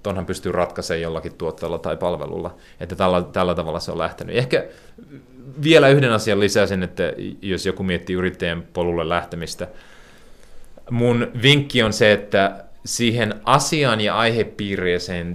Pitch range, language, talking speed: 90-105 Hz, Finnish, 135 wpm